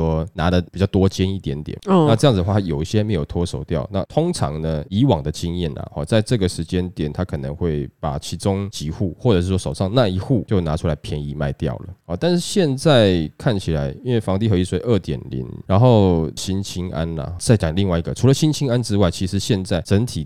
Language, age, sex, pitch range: Chinese, 20-39, male, 80-110 Hz